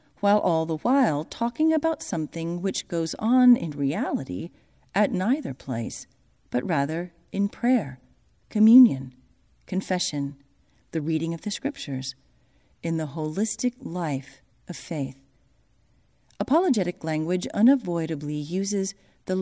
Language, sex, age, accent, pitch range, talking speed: English, female, 40-59, American, 150-235 Hz, 115 wpm